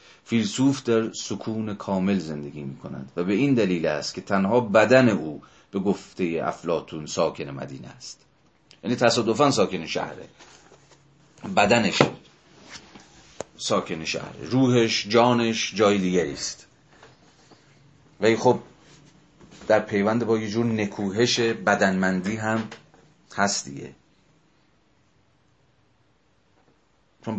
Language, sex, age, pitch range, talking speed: Persian, male, 40-59, 95-115 Hz, 100 wpm